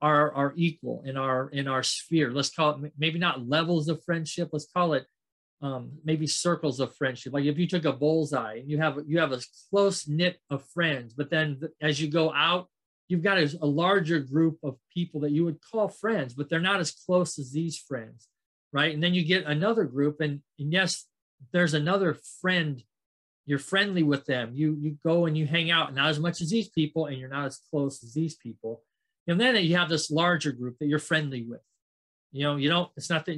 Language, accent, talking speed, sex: English, American, 225 wpm, male